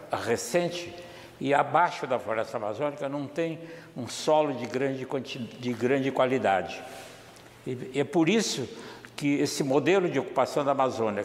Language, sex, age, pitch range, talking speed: Portuguese, male, 60-79, 130-180 Hz, 130 wpm